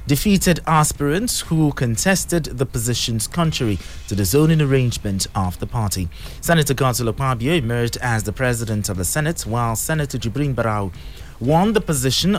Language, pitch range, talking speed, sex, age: English, 110-155 Hz, 150 wpm, male, 30-49